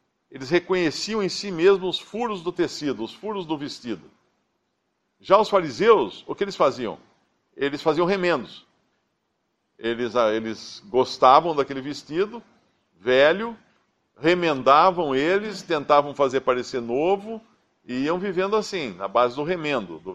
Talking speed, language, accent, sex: 130 wpm, Portuguese, Brazilian, male